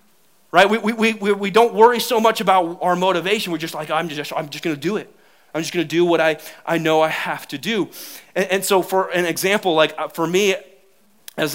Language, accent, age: English, American, 30-49